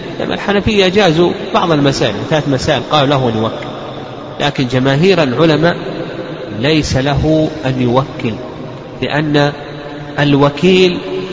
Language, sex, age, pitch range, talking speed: Arabic, male, 40-59, 140-180 Hz, 100 wpm